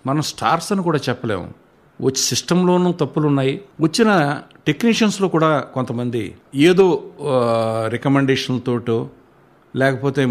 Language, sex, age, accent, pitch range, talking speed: Telugu, male, 60-79, native, 120-165 Hz, 85 wpm